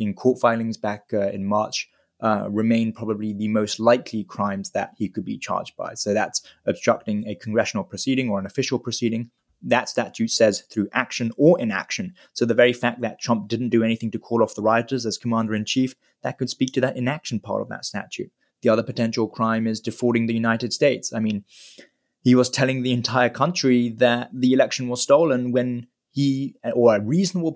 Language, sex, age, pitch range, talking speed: English, male, 20-39, 110-130 Hz, 200 wpm